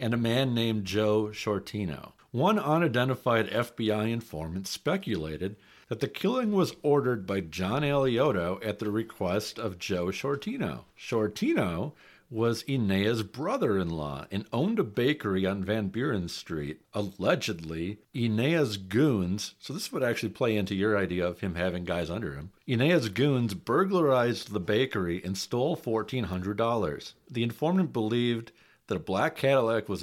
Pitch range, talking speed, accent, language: 90-120 Hz, 140 wpm, American, English